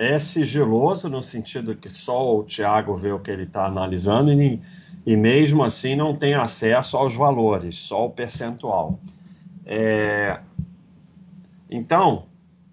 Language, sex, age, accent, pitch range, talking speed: Portuguese, male, 40-59, Brazilian, 110-175 Hz, 130 wpm